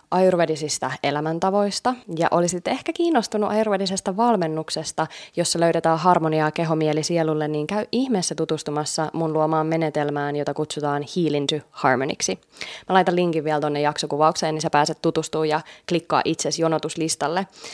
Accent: native